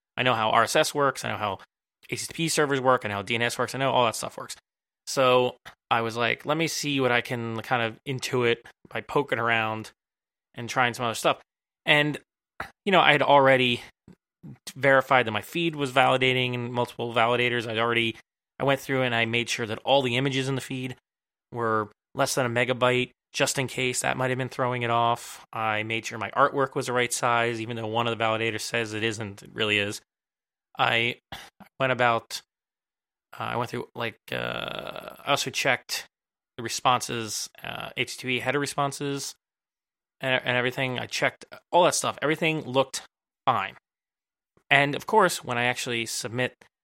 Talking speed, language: 185 wpm, English